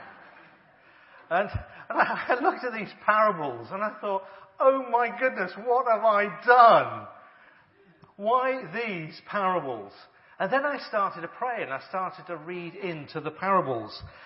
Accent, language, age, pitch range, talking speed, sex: British, English, 40-59, 165-220 Hz, 140 wpm, male